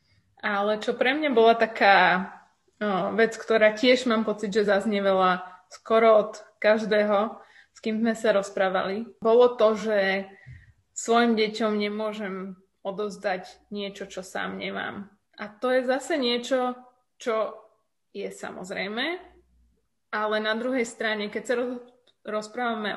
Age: 20-39